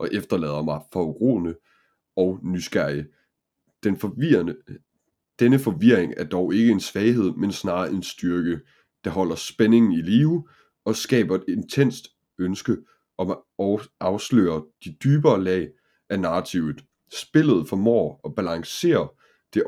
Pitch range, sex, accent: 85-120 Hz, male, native